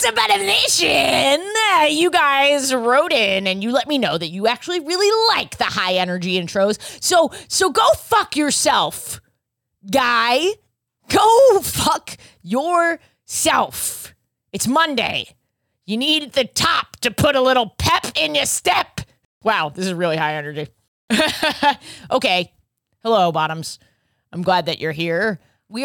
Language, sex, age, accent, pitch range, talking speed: English, female, 30-49, American, 175-280 Hz, 140 wpm